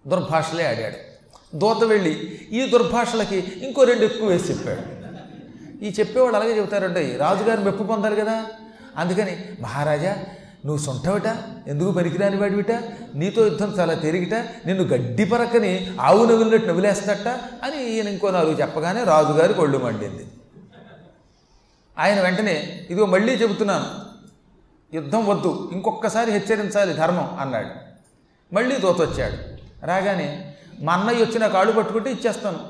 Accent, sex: native, male